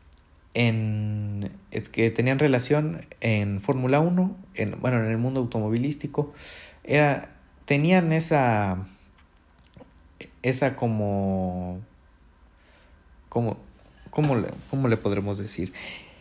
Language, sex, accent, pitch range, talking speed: Spanish, male, Mexican, 95-130 Hz, 95 wpm